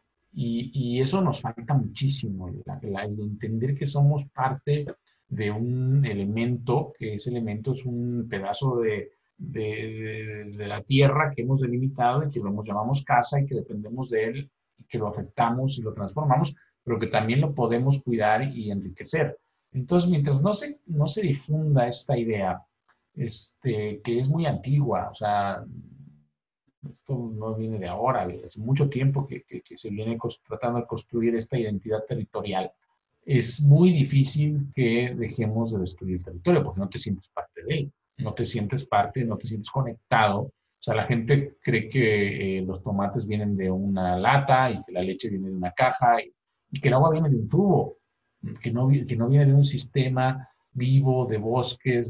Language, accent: Spanish, Mexican